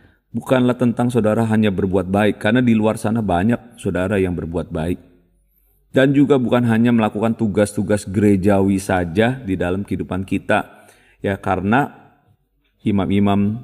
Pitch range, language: 95-120 Hz, Indonesian